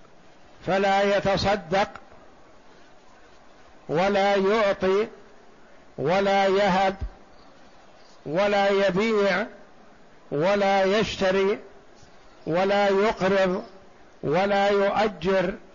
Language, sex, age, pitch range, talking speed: Arabic, male, 60-79, 165-200 Hz, 55 wpm